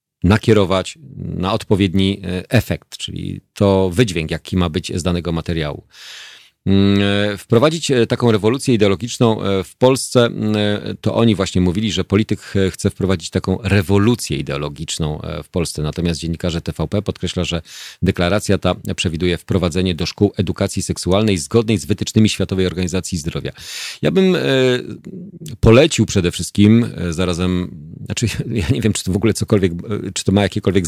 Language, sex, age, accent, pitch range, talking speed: Polish, male, 40-59, native, 90-105 Hz, 135 wpm